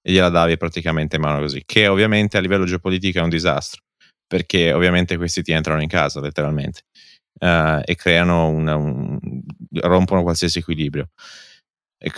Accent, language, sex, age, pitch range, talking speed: native, Italian, male, 20-39, 85-100 Hz, 160 wpm